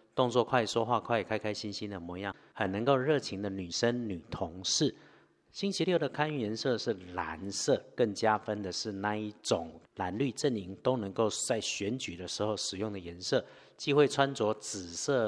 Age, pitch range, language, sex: 50-69, 95-125 Hz, Chinese, male